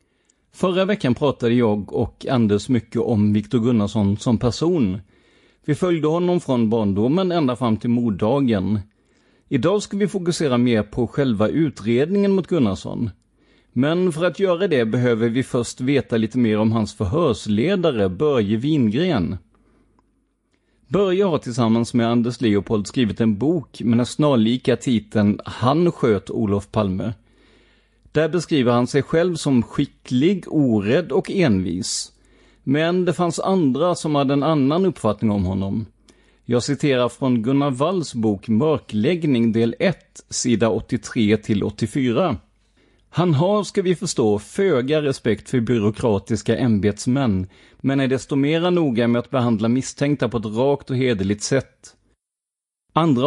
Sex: male